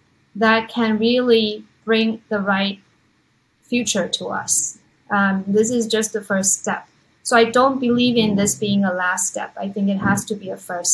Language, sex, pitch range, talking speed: English, female, 195-230 Hz, 185 wpm